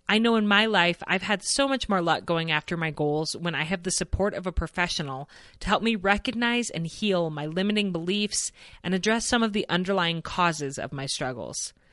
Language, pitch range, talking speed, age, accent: English, 160-210 Hz, 210 wpm, 30-49, American